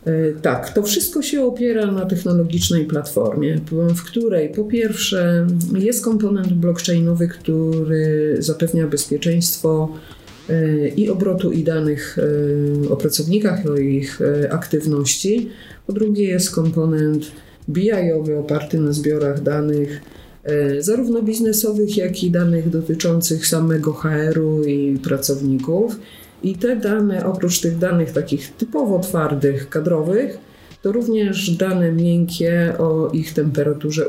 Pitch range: 150-185 Hz